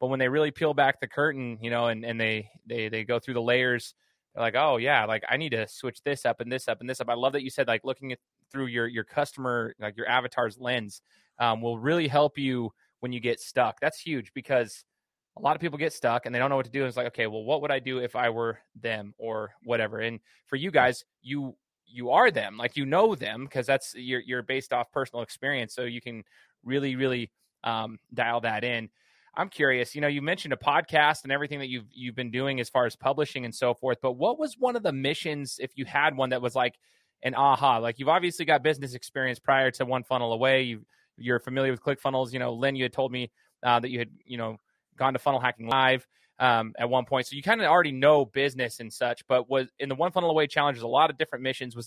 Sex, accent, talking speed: male, American, 255 wpm